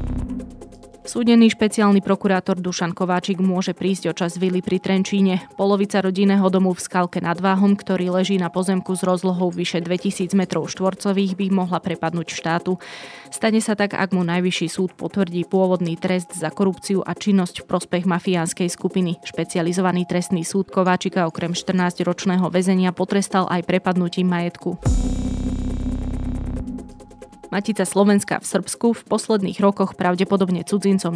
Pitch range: 175-195 Hz